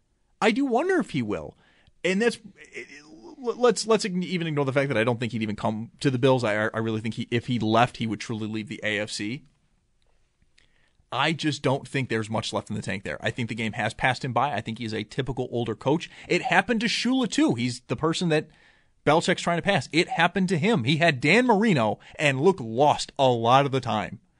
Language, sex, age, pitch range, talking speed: English, male, 30-49, 120-190 Hz, 230 wpm